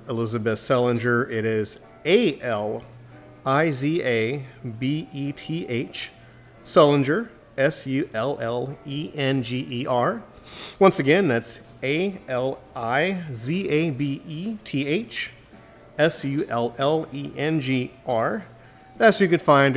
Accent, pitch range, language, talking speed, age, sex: American, 115-155 Hz, English, 50 wpm, 40-59, male